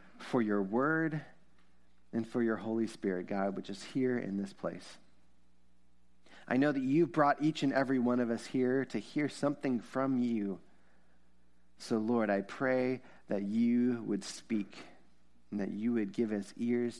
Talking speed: 170 wpm